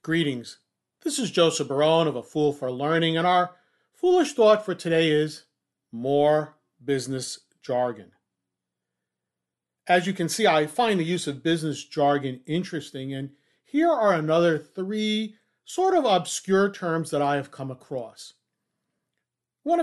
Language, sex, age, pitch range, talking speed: English, male, 40-59, 140-185 Hz, 140 wpm